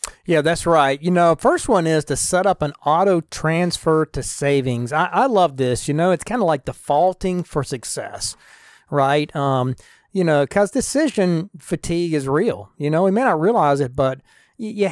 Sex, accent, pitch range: male, American, 145-180 Hz